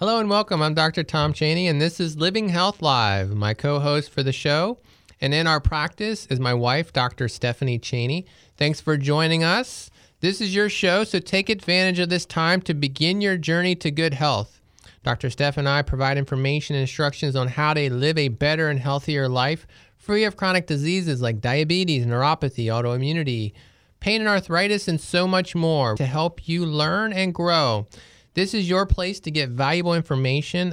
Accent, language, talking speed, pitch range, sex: American, English, 185 wpm, 130-175 Hz, male